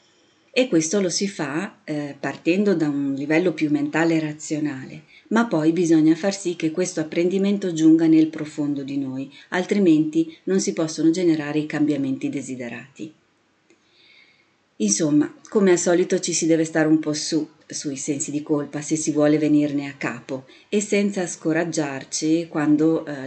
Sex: female